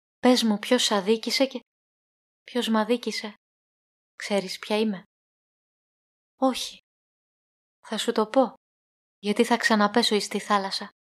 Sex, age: female, 20-39